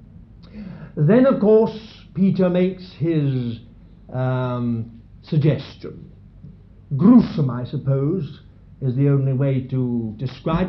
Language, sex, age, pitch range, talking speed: English, male, 60-79, 140-180 Hz, 95 wpm